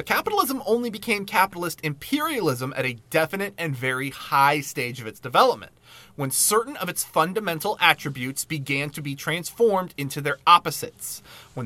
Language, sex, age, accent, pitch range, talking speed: English, male, 30-49, American, 135-195 Hz, 155 wpm